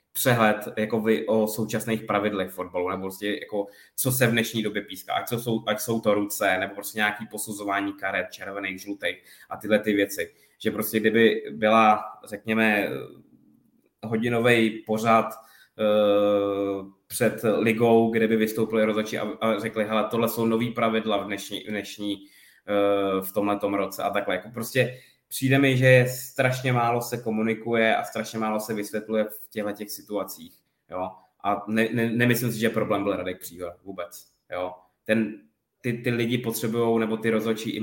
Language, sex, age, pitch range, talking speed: Czech, male, 20-39, 100-110 Hz, 165 wpm